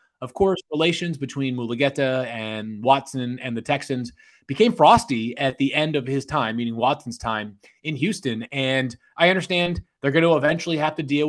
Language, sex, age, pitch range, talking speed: English, male, 20-39, 125-170 Hz, 175 wpm